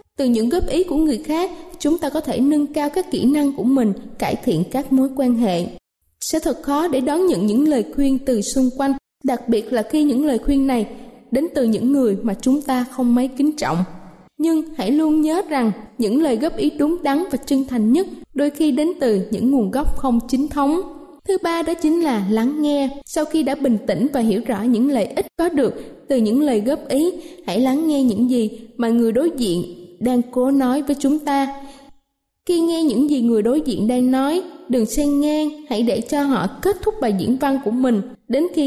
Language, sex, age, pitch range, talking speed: Vietnamese, female, 20-39, 235-300 Hz, 225 wpm